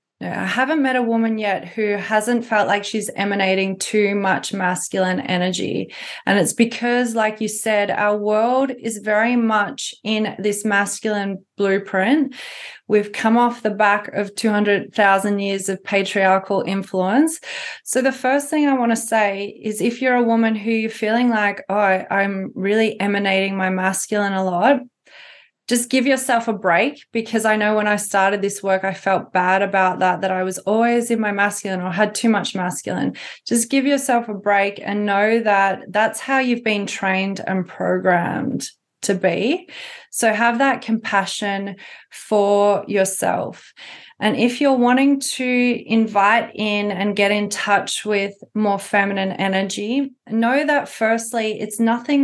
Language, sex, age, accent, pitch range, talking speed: English, female, 20-39, Australian, 200-235 Hz, 160 wpm